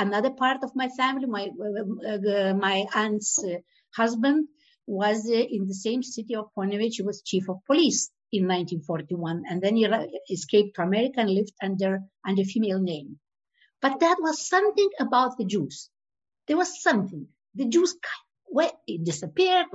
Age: 50-69